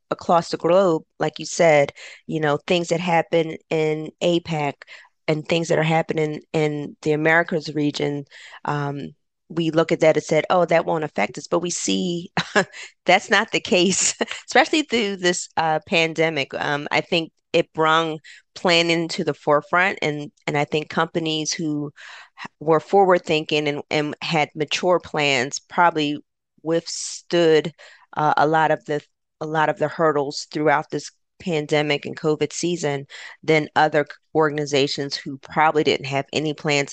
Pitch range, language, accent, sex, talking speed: 145-175 Hz, English, American, female, 160 wpm